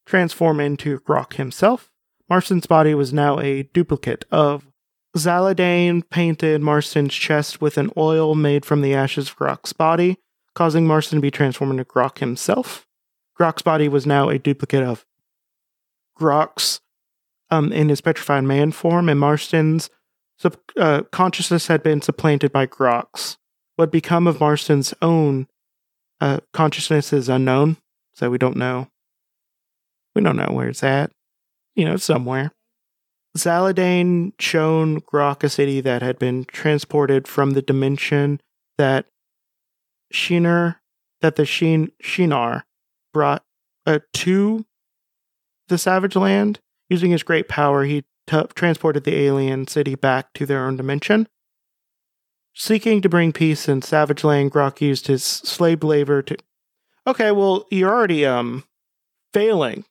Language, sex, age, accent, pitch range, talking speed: English, male, 30-49, American, 140-170 Hz, 135 wpm